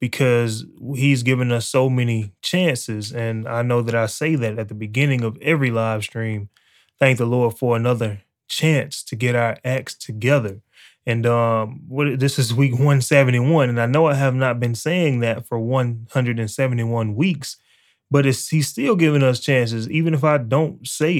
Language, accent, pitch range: English, American, 115-150 Hz